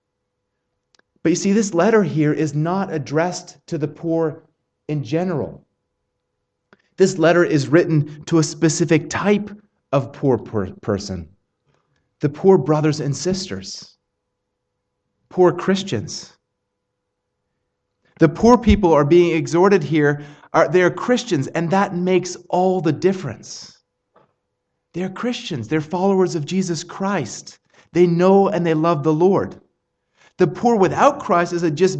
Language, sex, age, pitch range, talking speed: English, male, 30-49, 155-190 Hz, 130 wpm